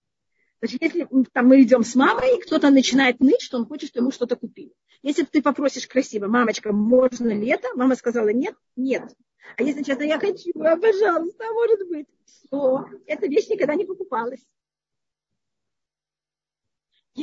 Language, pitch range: Russian, 250-315 Hz